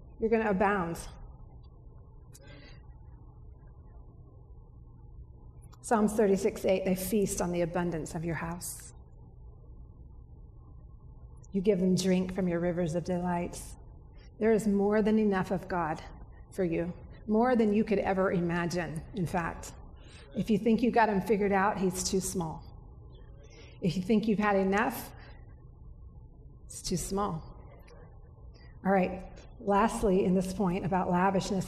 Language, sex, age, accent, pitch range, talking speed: English, female, 40-59, American, 175-210 Hz, 130 wpm